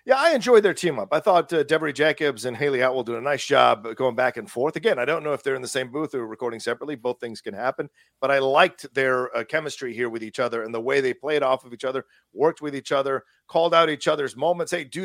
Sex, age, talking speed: male, 40-59, 275 wpm